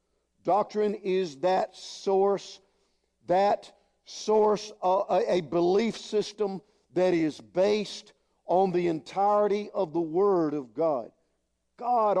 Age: 50-69